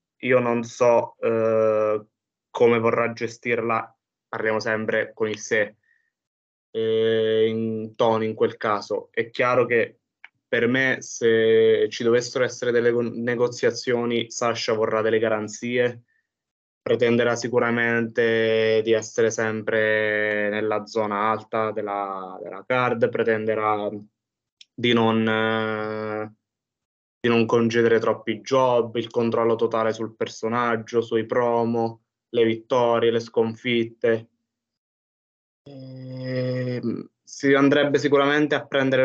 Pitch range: 110-120 Hz